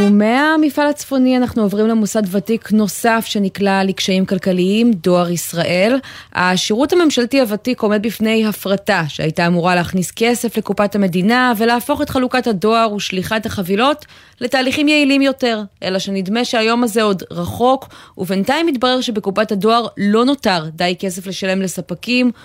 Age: 20-39